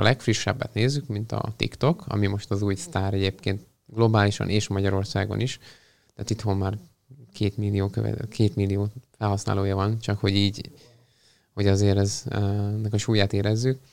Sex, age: male, 20-39